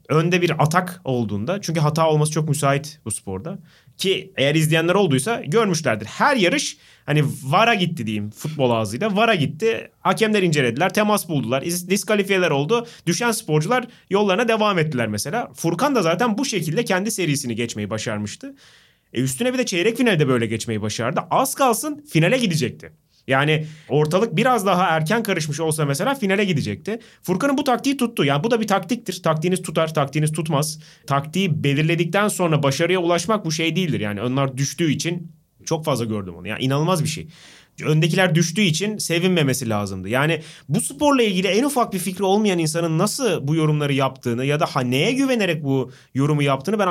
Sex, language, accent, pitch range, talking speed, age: male, Turkish, native, 140-200 Hz, 170 wpm, 30-49